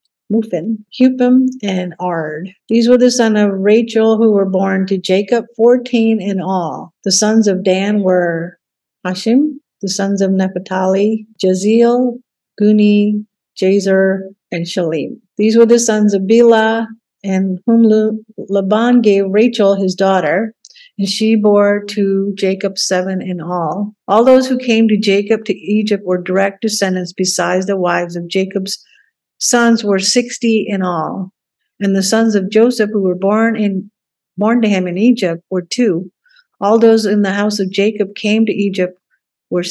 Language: English